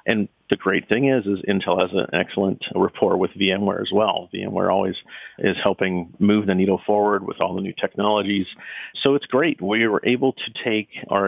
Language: English